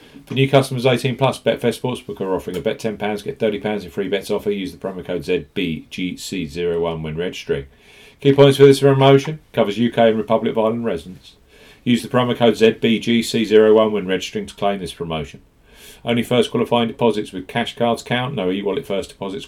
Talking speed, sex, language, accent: 190 wpm, male, English, British